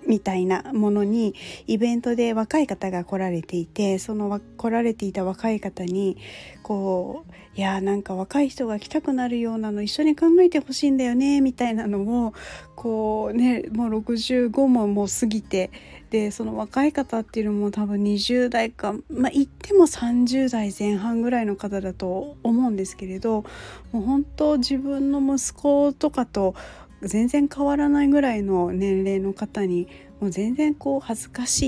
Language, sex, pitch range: Japanese, female, 195-245 Hz